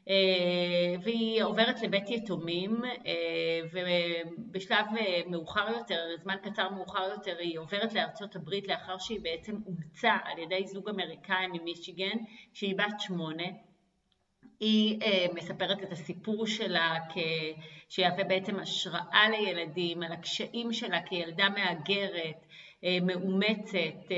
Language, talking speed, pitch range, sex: Hebrew, 105 wpm, 175-205 Hz, female